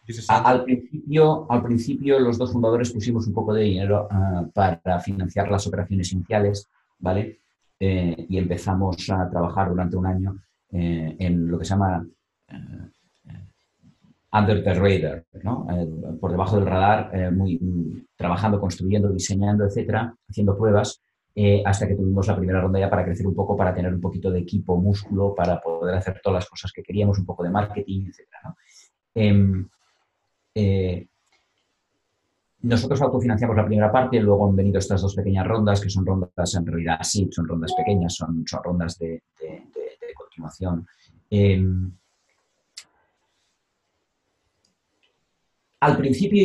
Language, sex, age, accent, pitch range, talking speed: Spanish, male, 30-49, Spanish, 90-110 Hz, 150 wpm